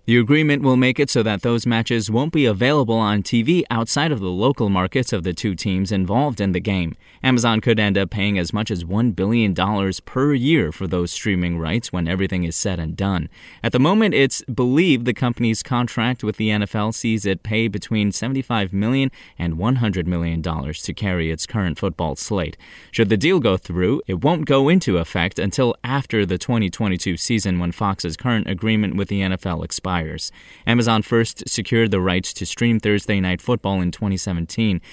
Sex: male